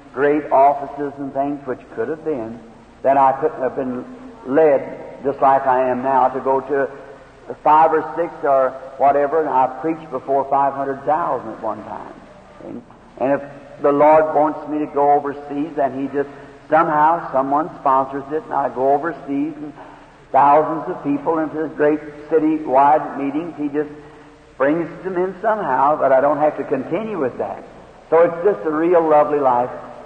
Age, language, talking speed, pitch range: 60-79, English, 170 wpm, 130-155 Hz